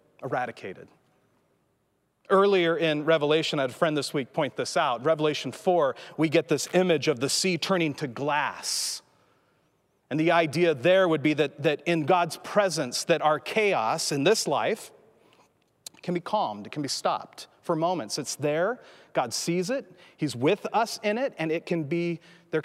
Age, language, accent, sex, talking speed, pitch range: 40-59, English, American, male, 175 wpm, 165-220 Hz